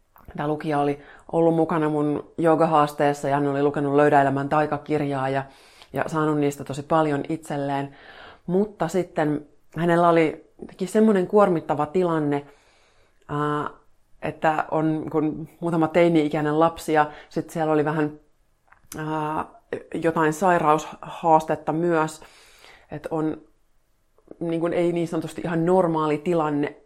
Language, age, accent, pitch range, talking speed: Finnish, 30-49, native, 145-165 Hz, 115 wpm